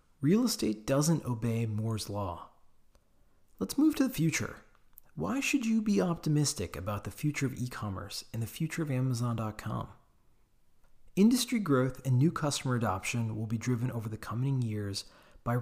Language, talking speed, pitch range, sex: English, 155 wpm, 105-145 Hz, male